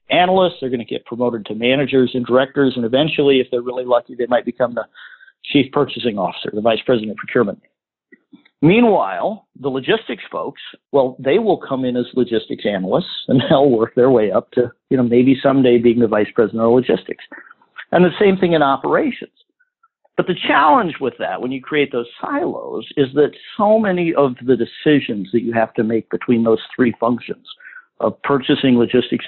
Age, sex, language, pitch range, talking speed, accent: 50-69, male, English, 120-170 Hz, 185 wpm, American